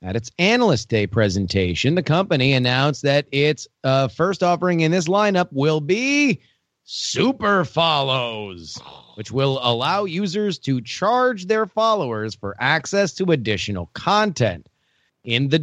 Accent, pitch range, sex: American, 110-165 Hz, male